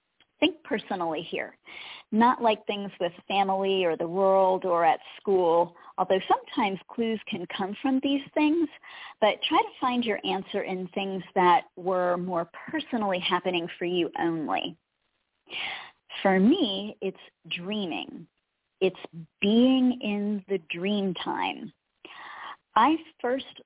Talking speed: 125 wpm